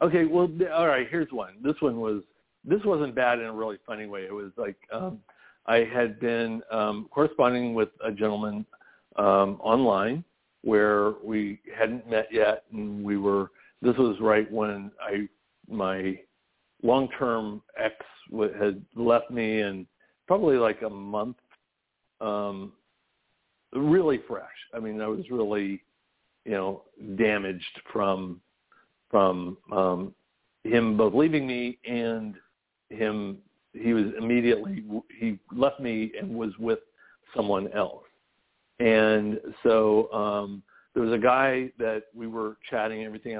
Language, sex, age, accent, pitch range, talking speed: English, male, 60-79, American, 105-120 Hz, 140 wpm